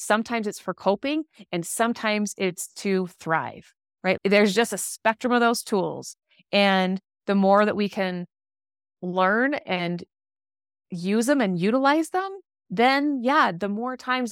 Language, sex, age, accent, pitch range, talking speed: English, female, 30-49, American, 180-220 Hz, 145 wpm